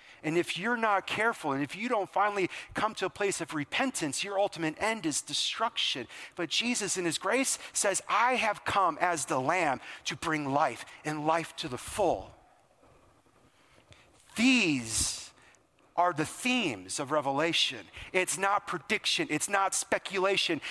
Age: 40-59